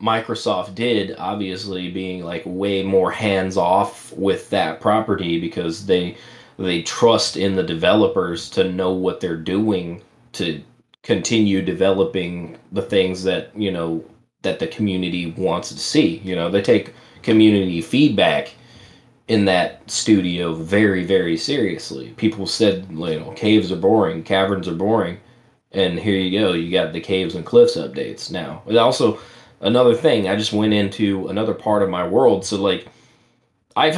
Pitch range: 90-110 Hz